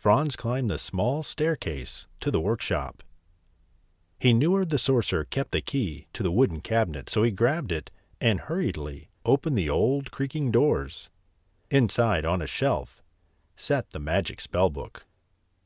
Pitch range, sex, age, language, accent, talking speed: 90-120 Hz, male, 50-69, English, American, 150 wpm